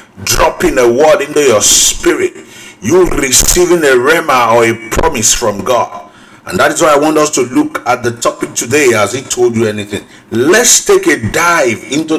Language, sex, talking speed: English, male, 185 wpm